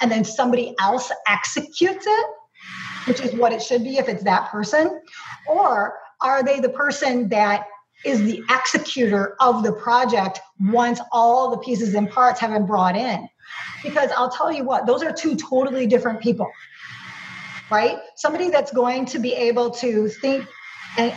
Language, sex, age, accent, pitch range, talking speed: English, female, 40-59, American, 215-250 Hz, 165 wpm